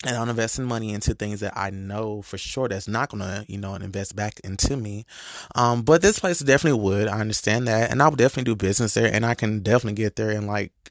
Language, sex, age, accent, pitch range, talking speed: English, male, 20-39, American, 105-120 Hz, 250 wpm